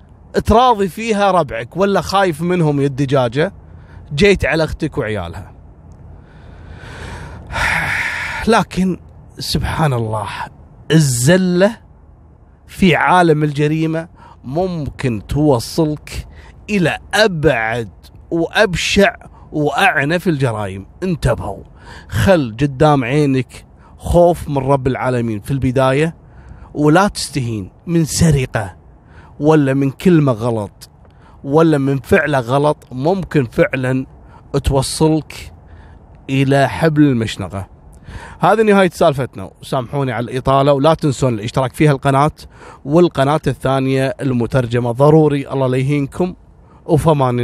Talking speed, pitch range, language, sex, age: 90 wpm, 115-160 Hz, Arabic, male, 30-49